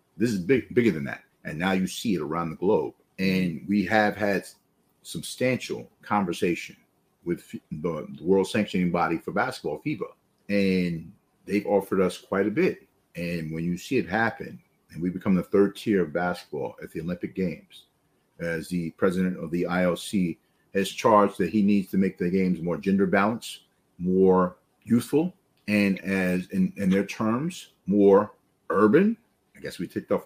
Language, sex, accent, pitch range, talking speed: English, male, American, 85-100 Hz, 170 wpm